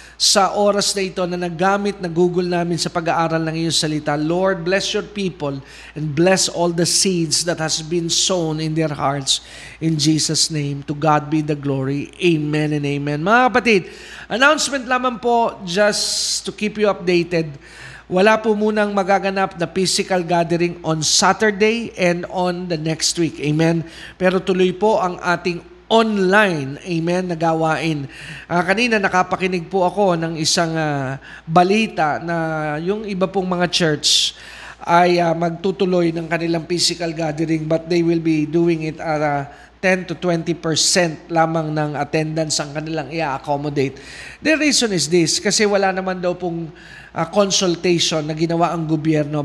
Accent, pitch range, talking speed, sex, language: native, 160-190 Hz, 155 wpm, male, Filipino